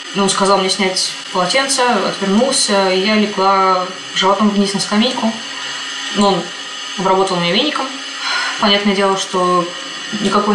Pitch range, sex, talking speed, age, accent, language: 185-210 Hz, female, 125 wpm, 20-39, native, Russian